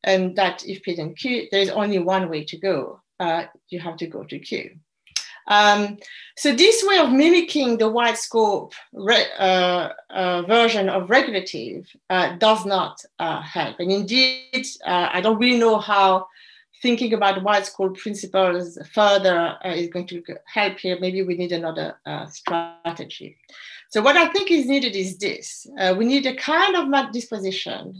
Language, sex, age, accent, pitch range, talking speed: English, female, 40-59, French, 175-245 Hz, 165 wpm